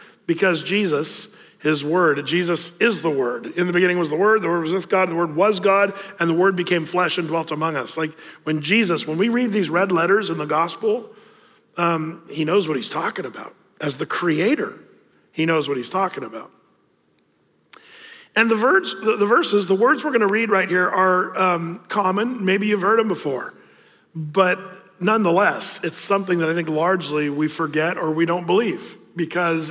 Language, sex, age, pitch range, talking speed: English, male, 50-69, 170-205 Hz, 190 wpm